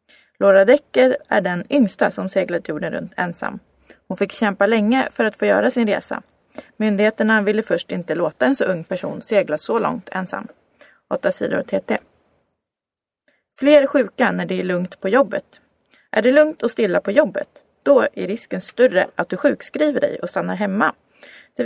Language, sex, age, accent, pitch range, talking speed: Swedish, female, 20-39, native, 195-265 Hz, 175 wpm